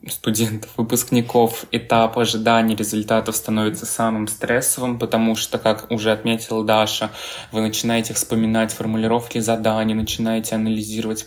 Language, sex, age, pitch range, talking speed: Russian, male, 20-39, 105-115 Hz, 110 wpm